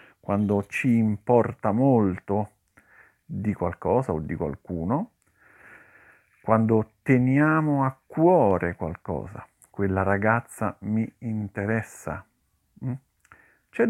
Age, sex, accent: 50-69, male, native